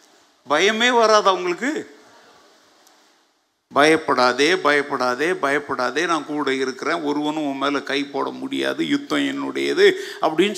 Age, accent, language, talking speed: 50-69, native, Tamil, 95 wpm